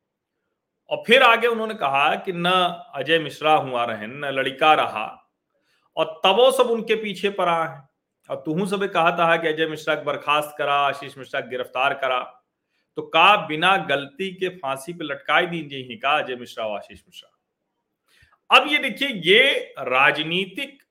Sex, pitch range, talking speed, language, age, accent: male, 140-200 Hz, 155 wpm, Hindi, 40-59, native